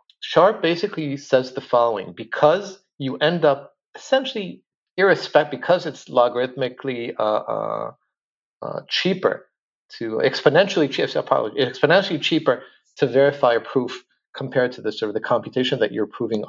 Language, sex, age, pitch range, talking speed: English, male, 40-59, 135-195 Hz, 125 wpm